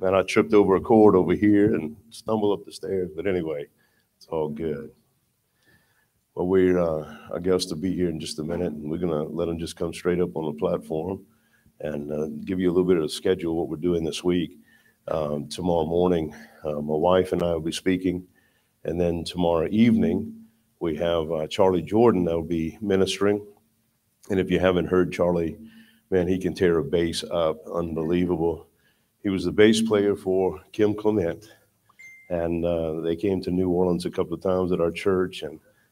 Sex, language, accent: male, English, American